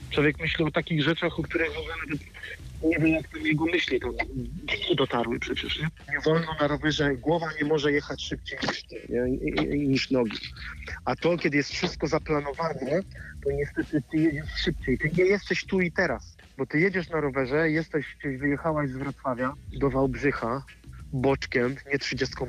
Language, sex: Polish, male